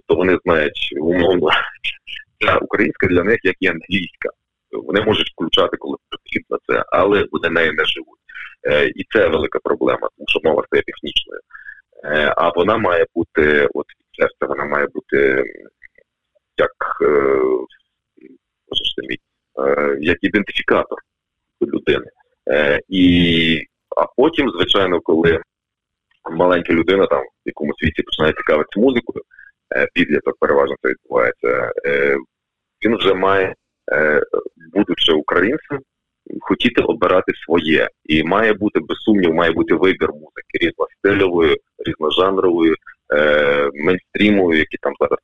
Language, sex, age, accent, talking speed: Ukrainian, male, 30-49, native, 120 wpm